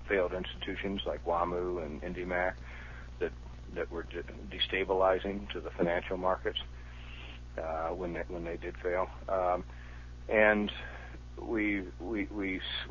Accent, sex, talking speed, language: American, male, 110 wpm, English